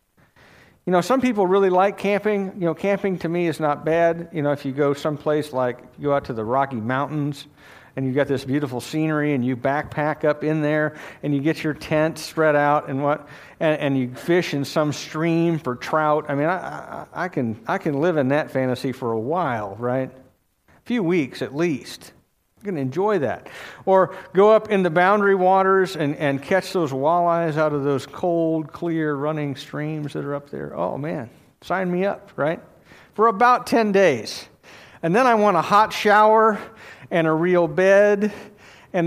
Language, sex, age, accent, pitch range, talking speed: English, male, 50-69, American, 145-185 Hz, 195 wpm